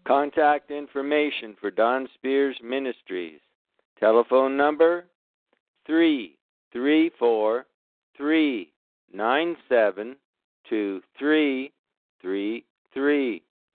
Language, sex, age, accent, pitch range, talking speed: English, male, 60-79, American, 120-155 Hz, 75 wpm